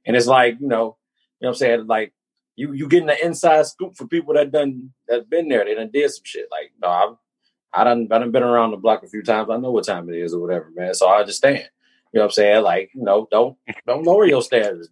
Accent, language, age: American, English, 30-49